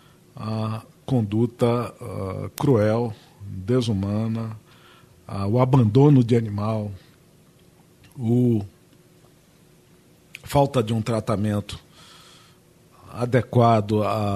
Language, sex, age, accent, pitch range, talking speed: Portuguese, male, 50-69, Brazilian, 105-135 Hz, 60 wpm